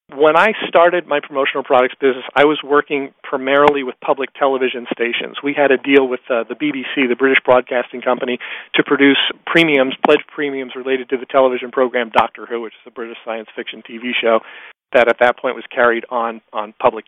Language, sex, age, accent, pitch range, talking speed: English, male, 40-59, American, 130-150 Hz, 195 wpm